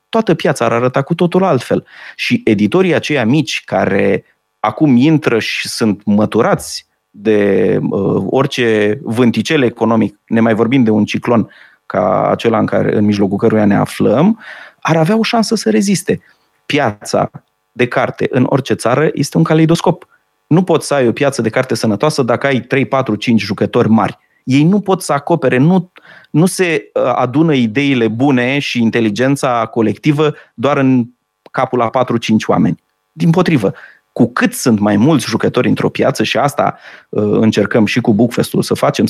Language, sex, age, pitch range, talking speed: Romanian, male, 30-49, 115-160 Hz, 160 wpm